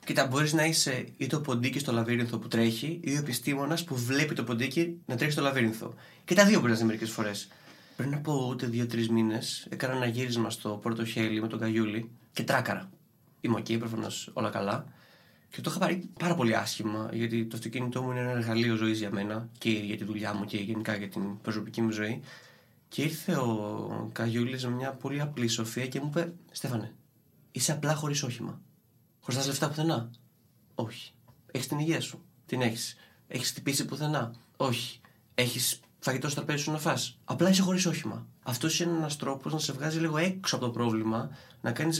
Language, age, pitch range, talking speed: Greek, 20-39, 115-150 Hz, 195 wpm